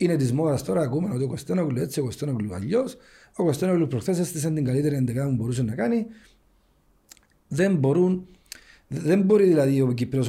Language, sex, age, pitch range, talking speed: Greek, male, 40-59, 120-165 Hz, 165 wpm